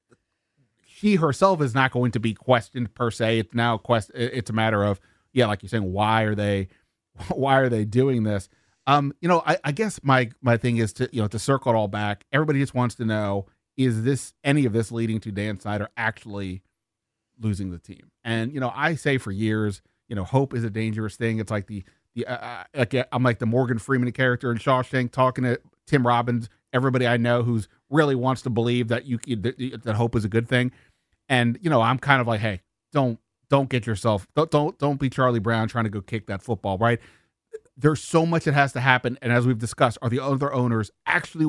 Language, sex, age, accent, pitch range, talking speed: English, male, 30-49, American, 110-135 Hz, 225 wpm